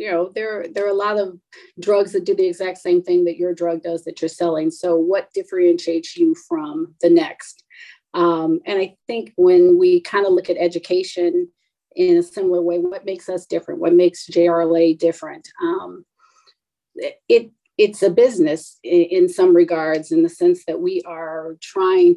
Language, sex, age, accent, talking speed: English, female, 40-59, American, 185 wpm